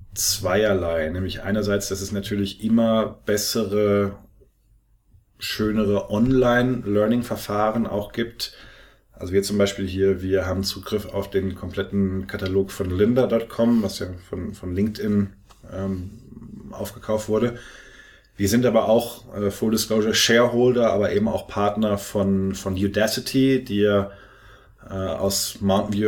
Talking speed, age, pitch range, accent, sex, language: 120 wpm, 30-49, 100-115 Hz, German, male, German